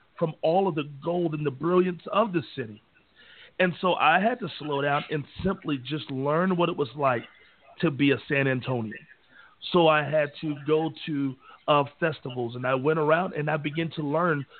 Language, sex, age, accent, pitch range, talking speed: English, male, 40-59, American, 140-175 Hz, 195 wpm